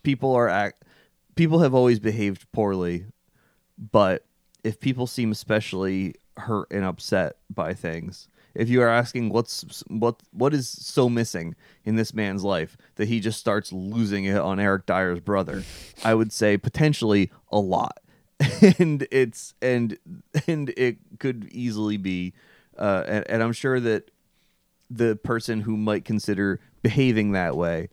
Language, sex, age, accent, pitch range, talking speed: English, male, 30-49, American, 95-120 Hz, 150 wpm